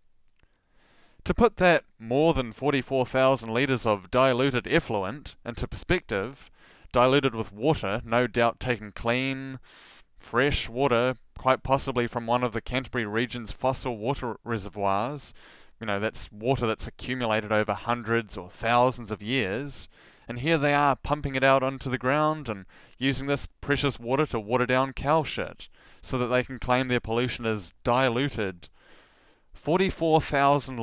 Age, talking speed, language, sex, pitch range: 20-39, 145 wpm, English, male, 110-135 Hz